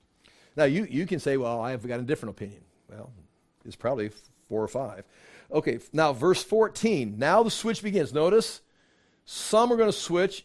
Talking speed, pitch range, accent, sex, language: 180 wpm, 140-190 Hz, American, male, English